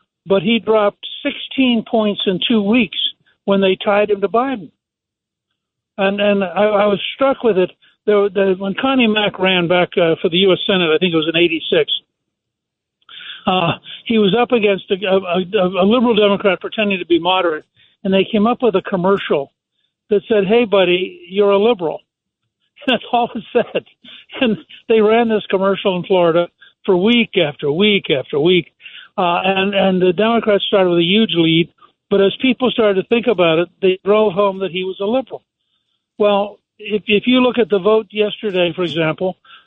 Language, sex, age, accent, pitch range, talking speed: English, male, 60-79, American, 185-220 Hz, 190 wpm